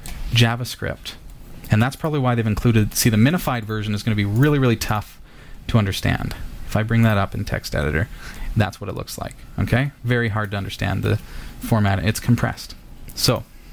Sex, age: male, 30-49